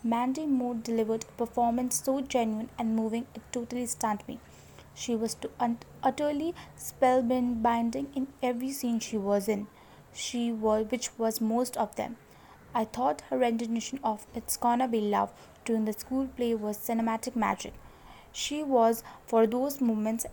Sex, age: female, 20-39